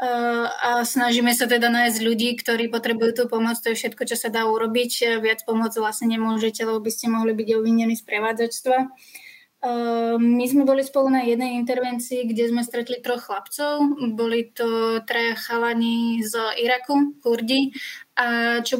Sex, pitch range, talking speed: female, 230-245 Hz, 160 wpm